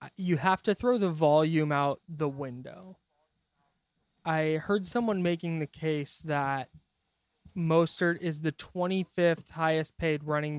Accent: American